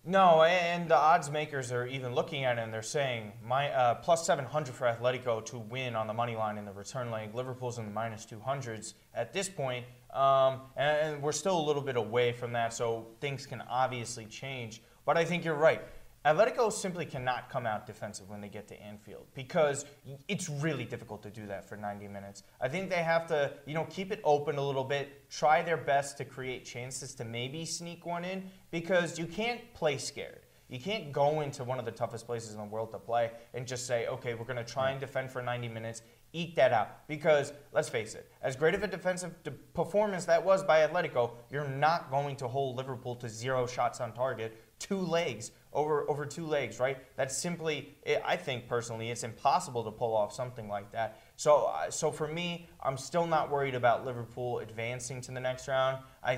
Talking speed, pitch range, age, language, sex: 215 wpm, 120-155 Hz, 30-49, English, male